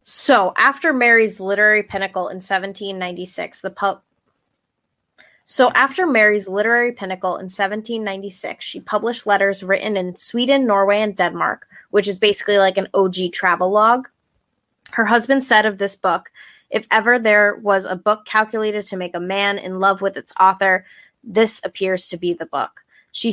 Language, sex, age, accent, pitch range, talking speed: English, female, 20-39, American, 185-215 Hz, 155 wpm